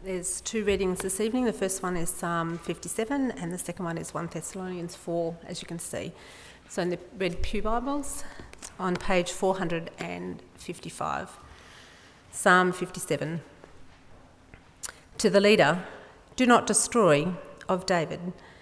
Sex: female